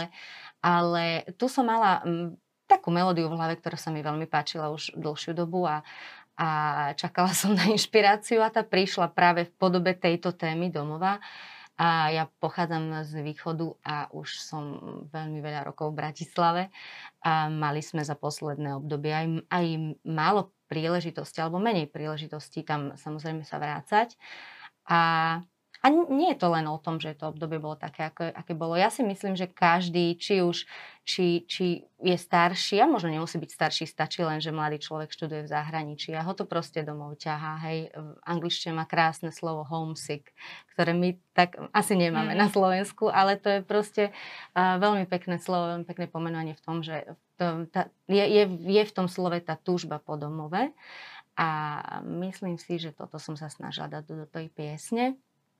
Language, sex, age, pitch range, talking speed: Slovak, female, 30-49, 155-185 Hz, 170 wpm